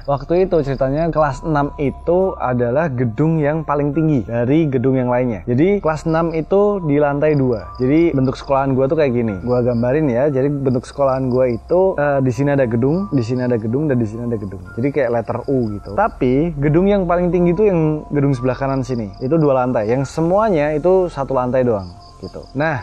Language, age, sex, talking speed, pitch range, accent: Indonesian, 20-39, male, 205 wpm, 125-160 Hz, native